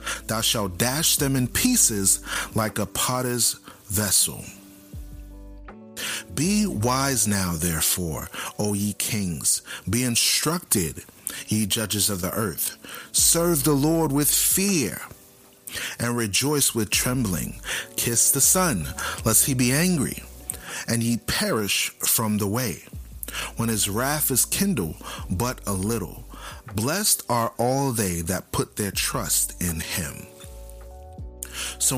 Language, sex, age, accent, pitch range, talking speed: English, male, 40-59, American, 100-135 Hz, 120 wpm